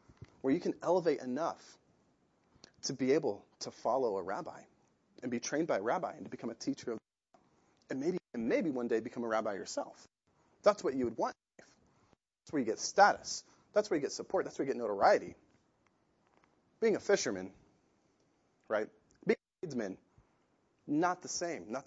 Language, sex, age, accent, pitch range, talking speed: English, male, 30-49, American, 120-200 Hz, 190 wpm